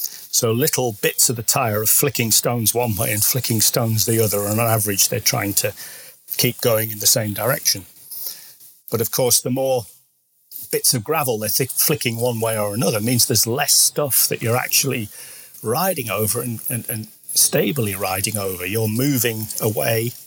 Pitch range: 110-130 Hz